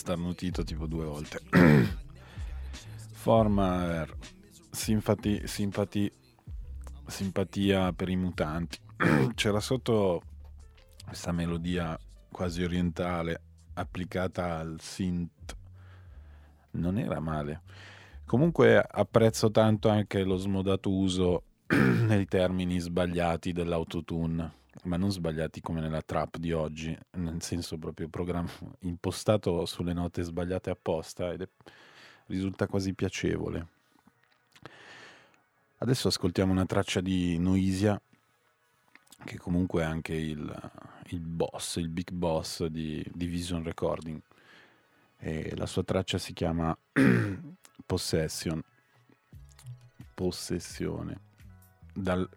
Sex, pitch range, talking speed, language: male, 80-95 Hz, 95 wpm, Italian